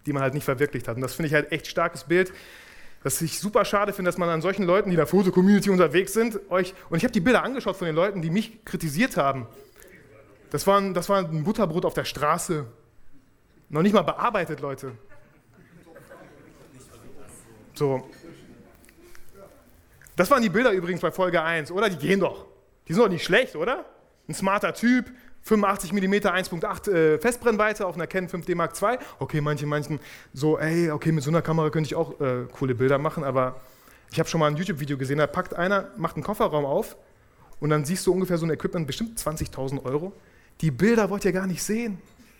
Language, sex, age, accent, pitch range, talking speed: German, male, 30-49, German, 150-200 Hz, 200 wpm